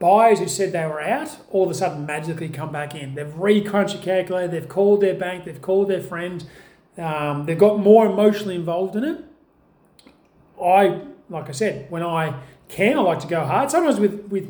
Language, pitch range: English, 160-200 Hz